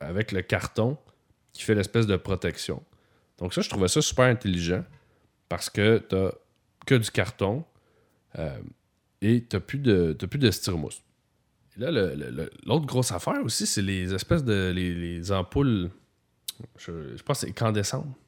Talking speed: 165 wpm